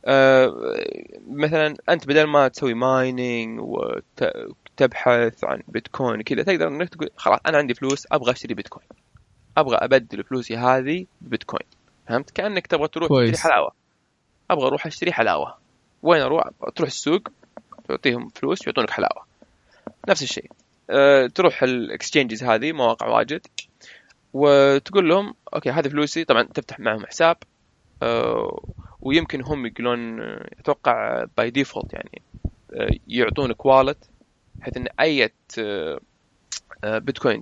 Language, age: Arabic, 20-39